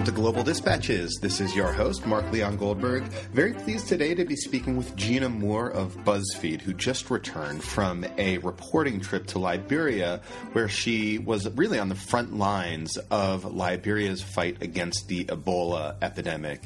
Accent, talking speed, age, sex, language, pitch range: American, 160 wpm, 30-49, male, English, 95-115 Hz